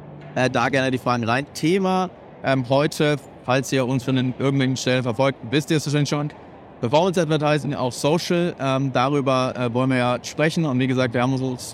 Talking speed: 205 wpm